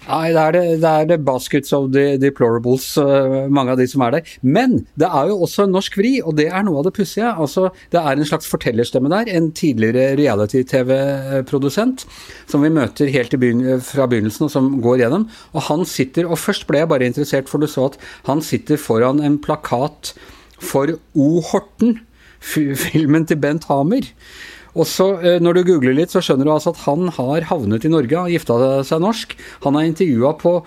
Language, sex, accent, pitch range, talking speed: Danish, male, Norwegian, 130-160 Hz, 195 wpm